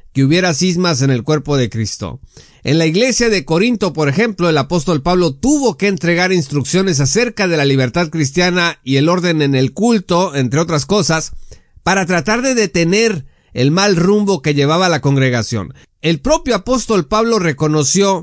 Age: 50-69